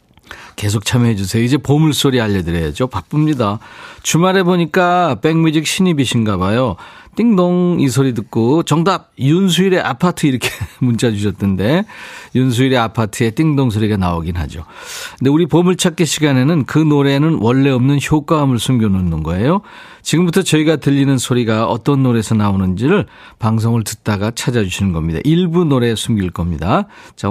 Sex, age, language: male, 40-59, Korean